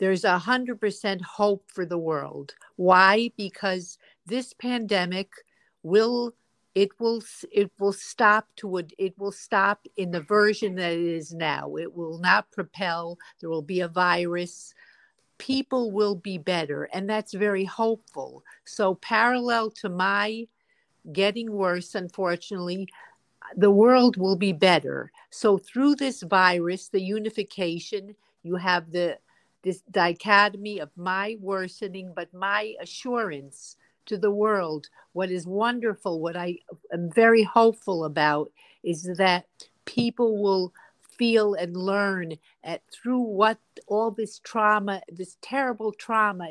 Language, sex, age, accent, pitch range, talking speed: English, female, 50-69, American, 180-215 Hz, 135 wpm